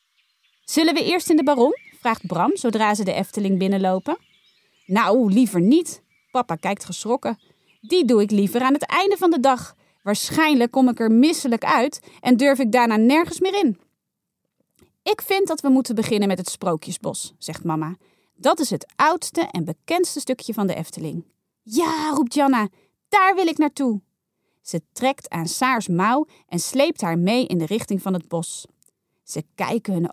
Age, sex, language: 30-49, female, Dutch